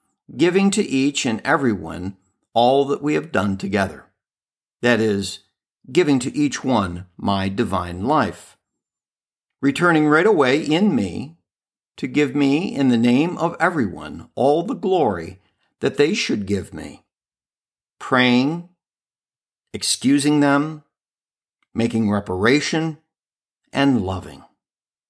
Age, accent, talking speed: 50-69, American, 115 wpm